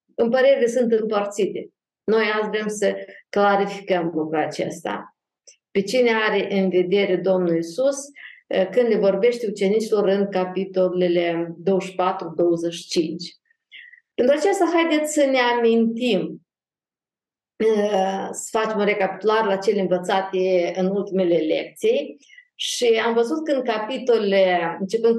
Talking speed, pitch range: 115 wpm, 195-255 Hz